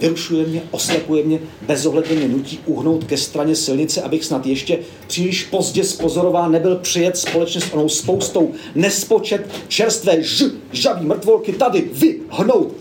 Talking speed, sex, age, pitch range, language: 135 wpm, male, 40-59, 140-170 Hz, Czech